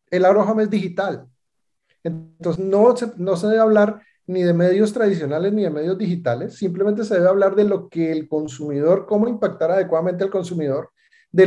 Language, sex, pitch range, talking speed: Spanish, male, 170-210 Hz, 180 wpm